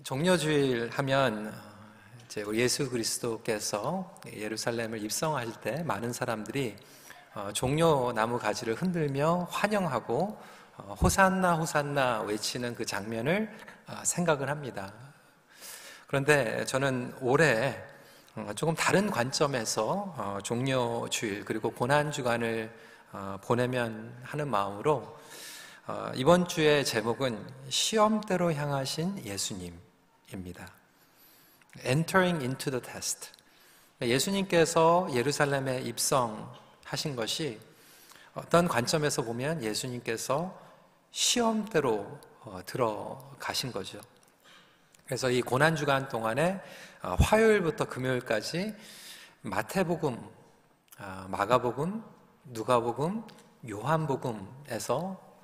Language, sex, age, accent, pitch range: Korean, male, 40-59, native, 115-165 Hz